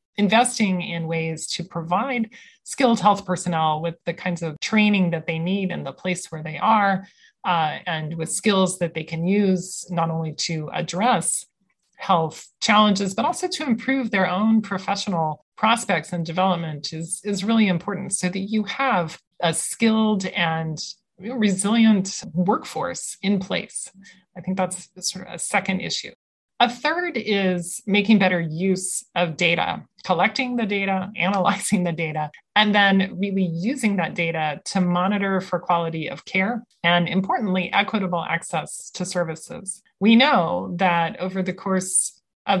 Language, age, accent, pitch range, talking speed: English, 30-49, American, 170-205 Hz, 150 wpm